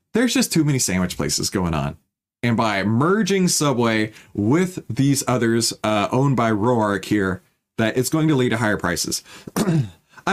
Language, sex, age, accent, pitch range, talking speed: English, male, 30-49, American, 110-155 Hz, 170 wpm